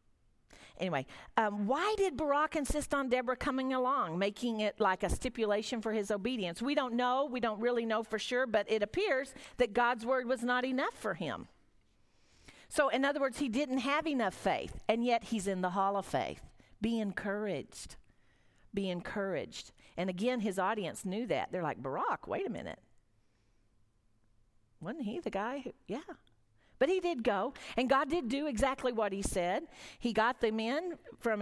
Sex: female